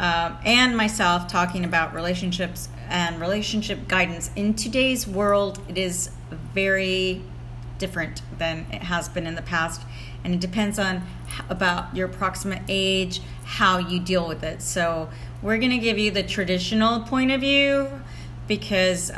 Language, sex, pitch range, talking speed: English, female, 160-210 Hz, 150 wpm